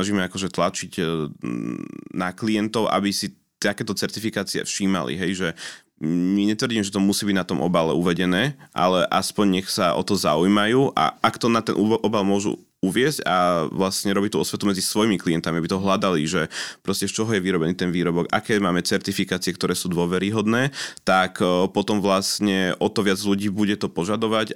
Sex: male